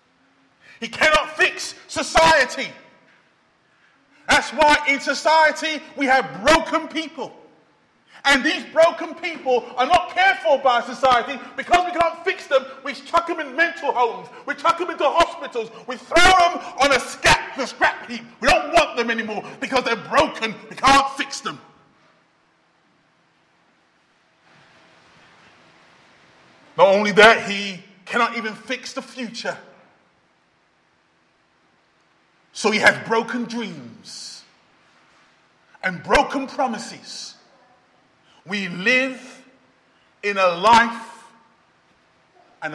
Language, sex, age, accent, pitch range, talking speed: English, male, 30-49, British, 235-310 Hz, 110 wpm